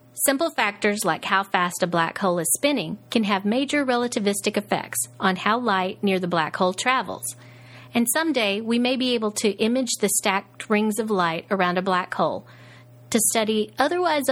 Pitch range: 165-230 Hz